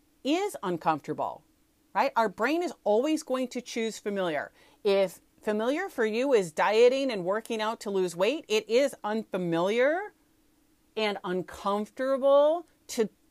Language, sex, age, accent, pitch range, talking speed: English, female, 40-59, American, 185-285 Hz, 130 wpm